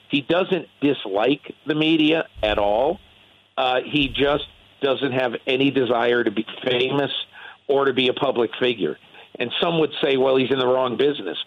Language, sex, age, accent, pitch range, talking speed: English, male, 50-69, American, 115-140 Hz, 175 wpm